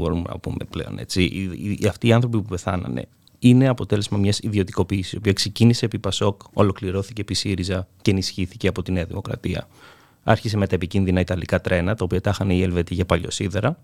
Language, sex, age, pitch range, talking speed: Greek, male, 30-49, 95-120 Hz, 180 wpm